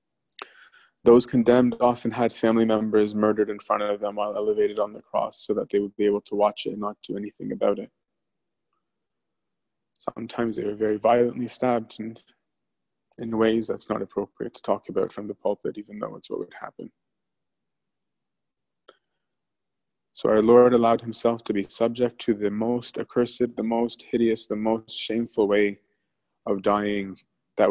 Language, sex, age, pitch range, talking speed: English, male, 20-39, 105-125 Hz, 165 wpm